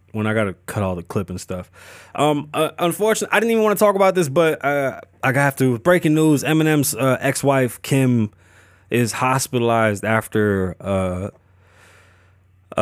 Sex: male